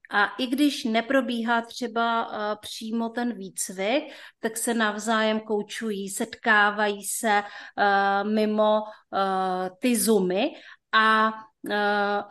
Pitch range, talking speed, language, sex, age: 205-235 Hz, 105 wpm, Czech, female, 30-49